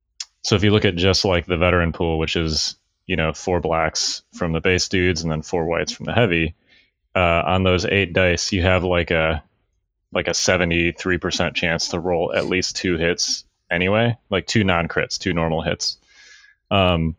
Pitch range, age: 80-95 Hz, 20-39